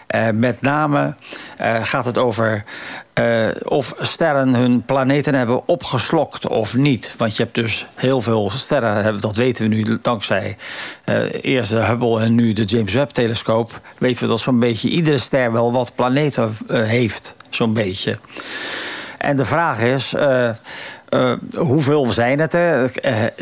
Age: 50-69